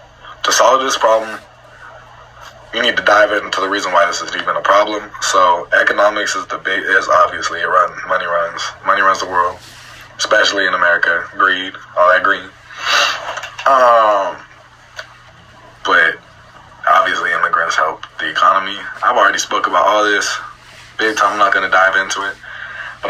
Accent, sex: American, male